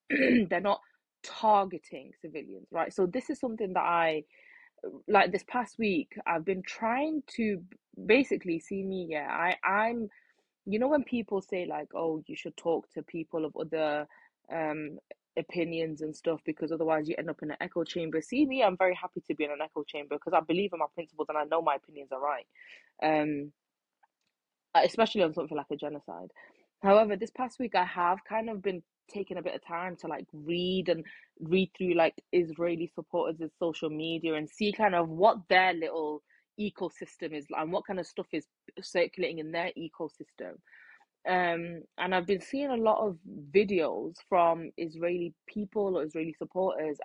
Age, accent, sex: 20-39, British, female